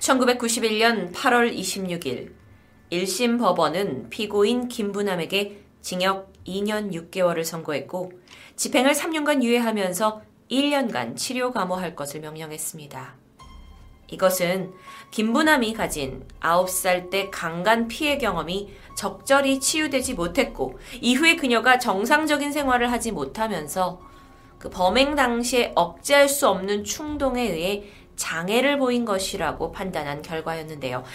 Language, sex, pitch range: Korean, female, 175-255 Hz